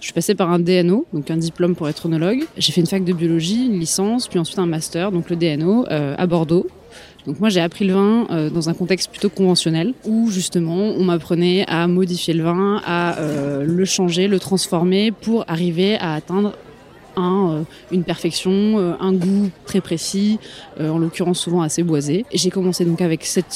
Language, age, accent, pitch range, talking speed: French, 20-39, French, 170-195 Hz, 200 wpm